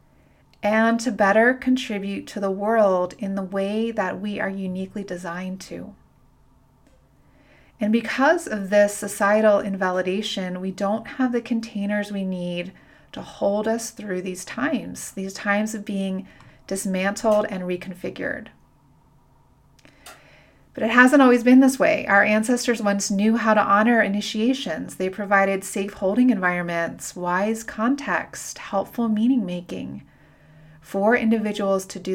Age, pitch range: 30-49, 185-220 Hz